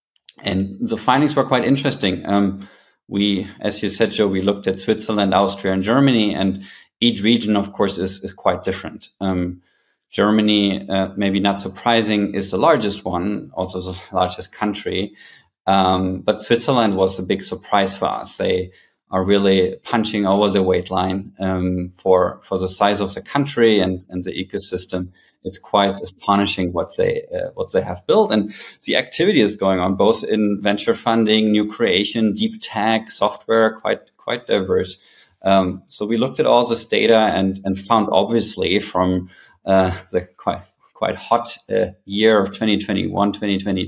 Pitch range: 95-110 Hz